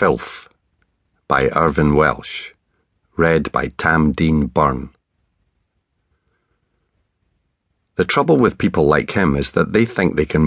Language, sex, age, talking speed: English, male, 50-69, 120 wpm